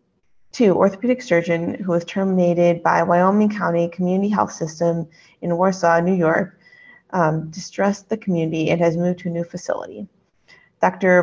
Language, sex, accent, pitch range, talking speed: English, female, American, 170-200 Hz, 150 wpm